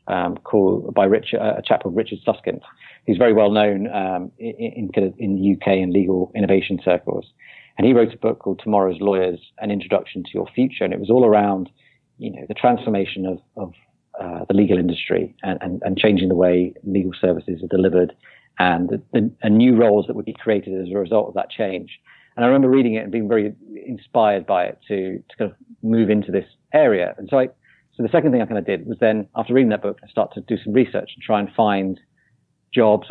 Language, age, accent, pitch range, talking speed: English, 40-59, British, 95-115 Hz, 230 wpm